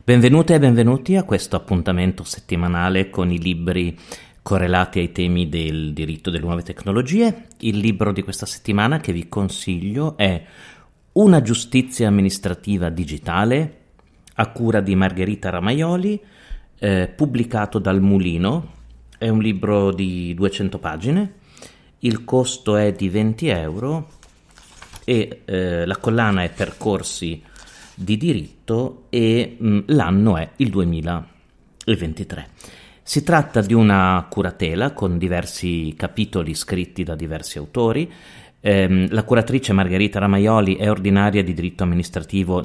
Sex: male